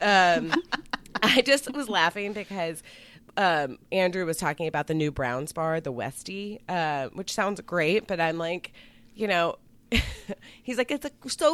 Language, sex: English, female